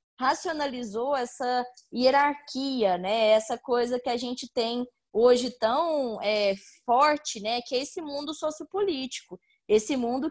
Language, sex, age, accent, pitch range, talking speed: Portuguese, female, 10-29, Brazilian, 215-265 Hz, 130 wpm